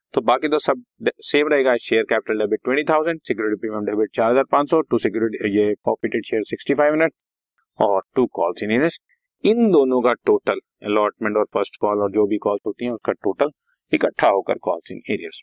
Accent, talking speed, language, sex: native, 155 wpm, Hindi, male